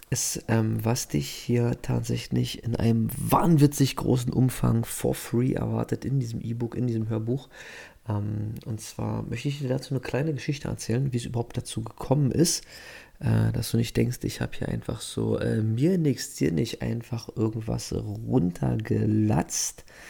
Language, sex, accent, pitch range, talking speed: German, male, German, 110-130 Hz, 165 wpm